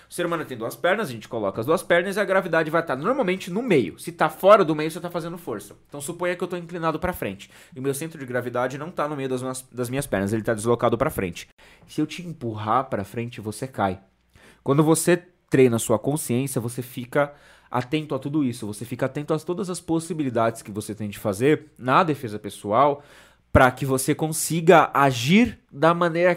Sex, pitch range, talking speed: male, 110-150 Hz, 225 wpm